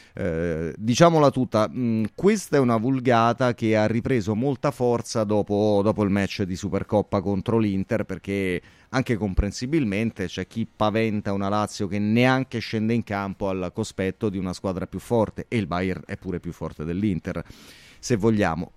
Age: 30-49